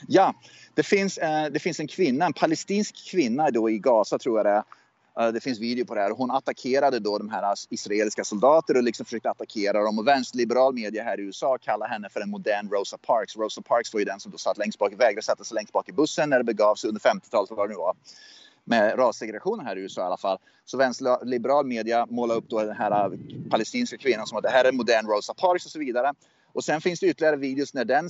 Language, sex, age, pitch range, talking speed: Swedish, male, 30-49, 120-175 Hz, 235 wpm